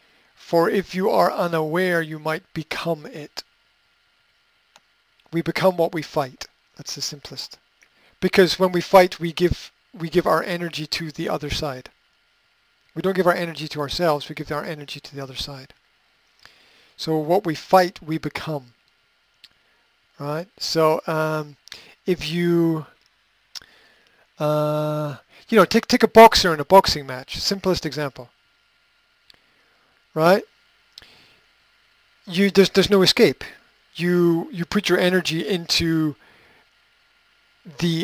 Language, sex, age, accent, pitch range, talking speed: English, male, 50-69, American, 150-175 Hz, 130 wpm